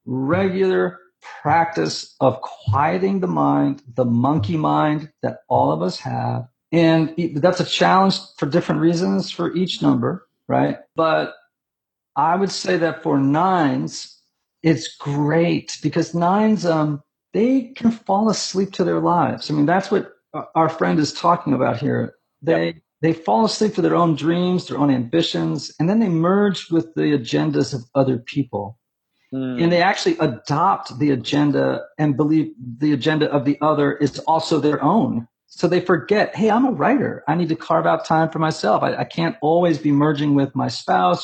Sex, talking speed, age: male, 170 wpm, 50-69